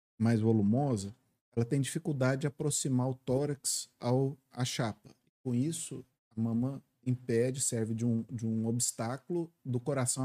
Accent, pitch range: Brazilian, 115-150 Hz